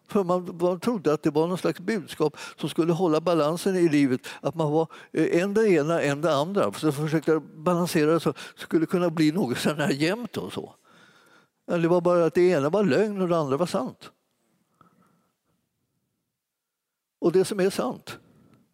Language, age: Swedish, 60-79